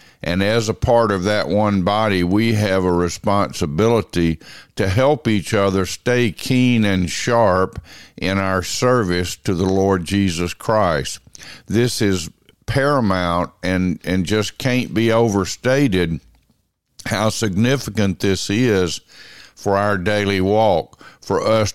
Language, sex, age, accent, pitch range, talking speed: English, male, 50-69, American, 90-110 Hz, 130 wpm